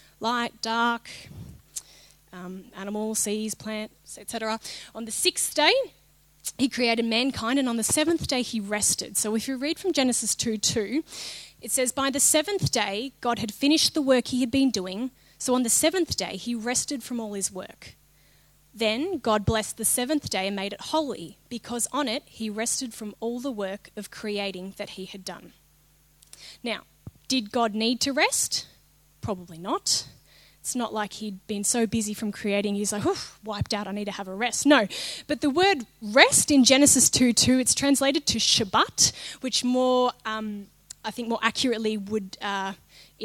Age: 20-39